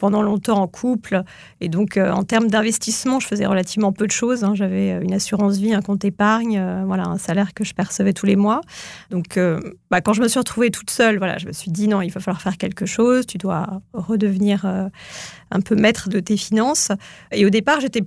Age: 30-49